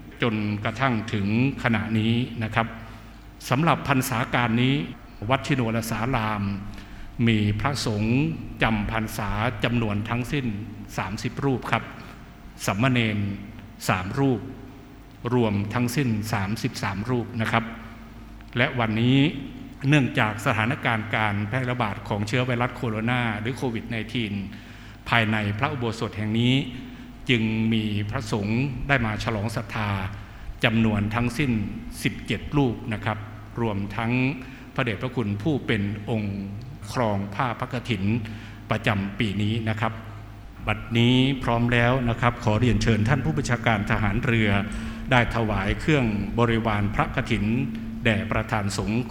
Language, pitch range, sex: Thai, 105-125 Hz, male